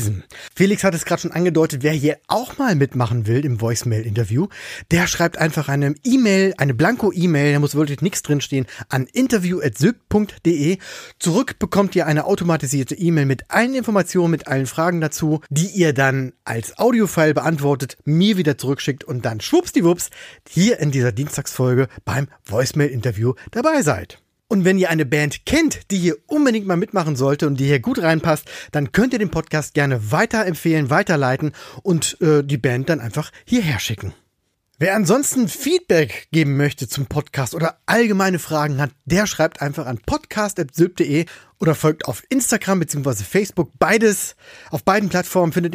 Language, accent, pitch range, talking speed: German, German, 140-195 Hz, 160 wpm